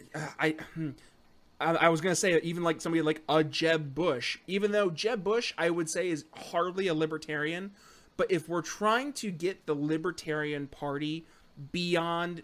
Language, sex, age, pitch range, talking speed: English, male, 30-49, 155-195 Hz, 170 wpm